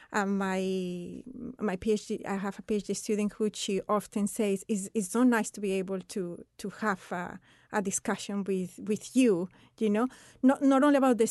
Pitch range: 200-240 Hz